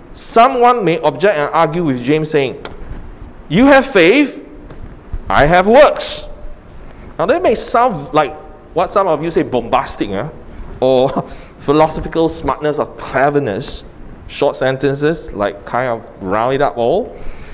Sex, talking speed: male, 135 wpm